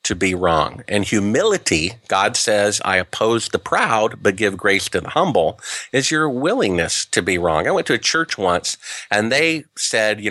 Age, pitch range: 50-69, 105-160 Hz